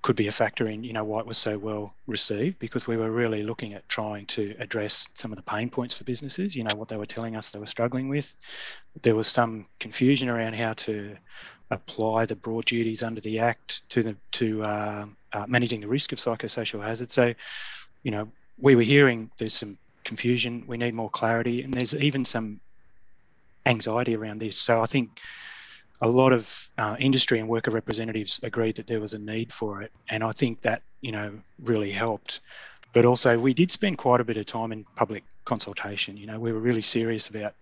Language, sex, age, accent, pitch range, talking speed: English, male, 20-39, Australian, 110-125 Hz, 210 wpm